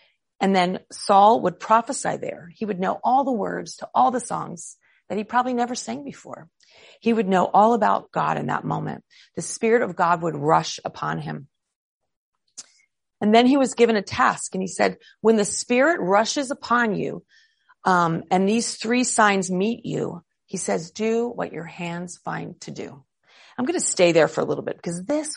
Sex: female